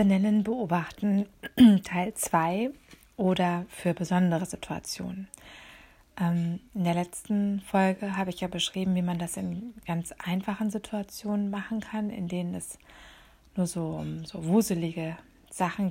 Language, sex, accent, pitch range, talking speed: German, female, German, 175-200 Hz, 130 wpm